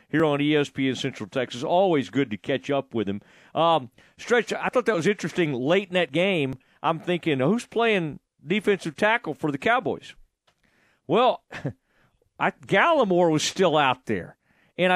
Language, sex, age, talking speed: English, male, 40-59, 160 wpm